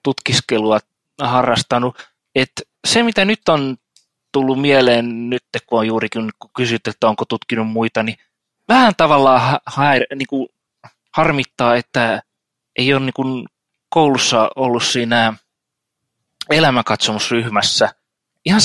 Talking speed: 105 wpm